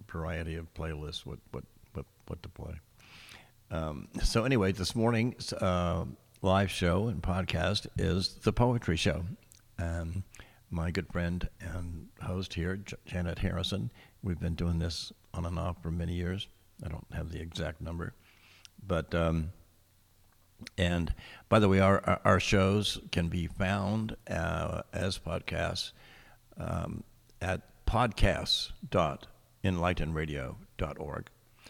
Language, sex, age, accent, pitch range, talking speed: English, male, 60-79, American, 85-100 Hz, 125 wpm